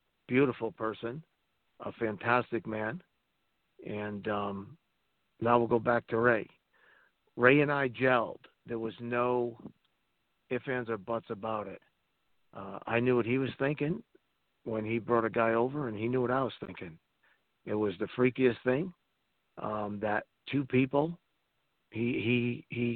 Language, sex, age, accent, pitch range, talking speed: English, male, 50-69, American, 110-125 Hz, 150 wpm